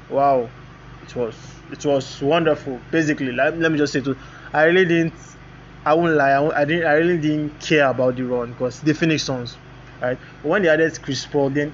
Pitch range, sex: 135-160 Hz, male